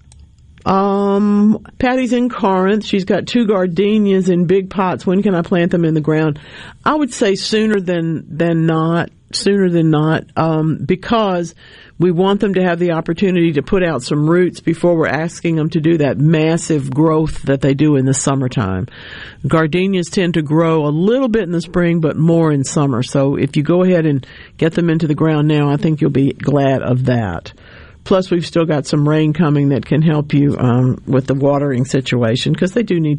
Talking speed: 200 wpm